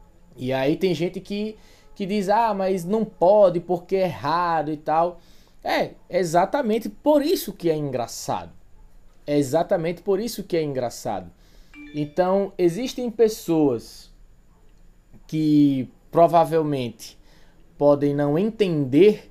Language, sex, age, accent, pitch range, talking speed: Portuguese, male, 20-39, Brazilian, 150-225 Hz, 120 wpm